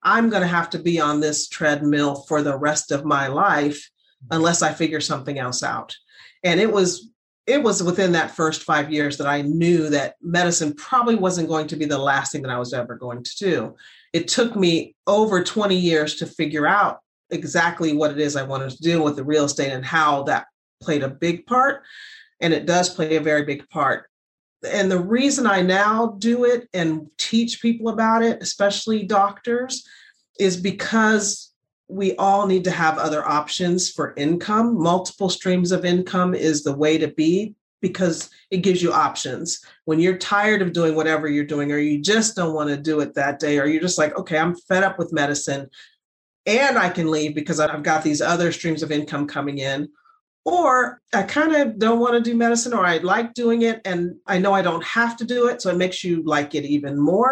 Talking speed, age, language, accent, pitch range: 210 wpm, 40-59, English, American, 150-200 Hz